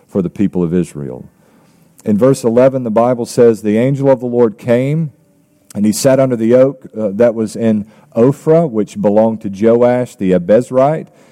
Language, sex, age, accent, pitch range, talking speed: English, male, 40-59, American, 105-135 Hz, 175 wpm